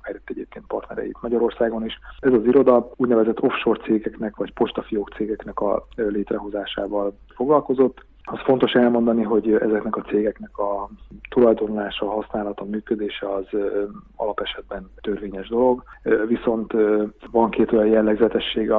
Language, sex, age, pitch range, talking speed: Hungarian, male, 30-49, 105-115 Hz, 130 wpm